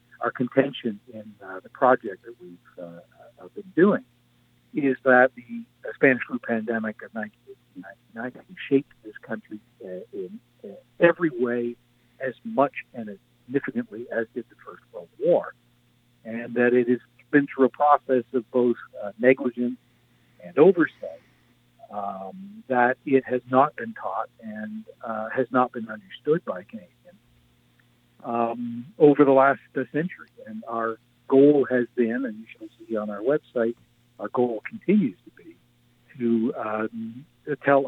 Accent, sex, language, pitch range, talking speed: American, male, English, 115-140 Hz, 145 wpm